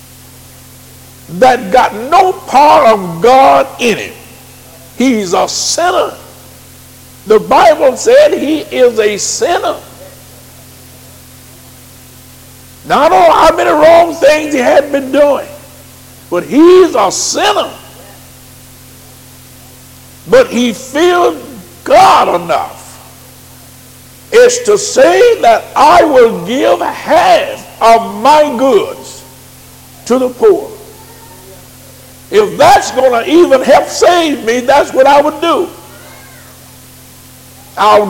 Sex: male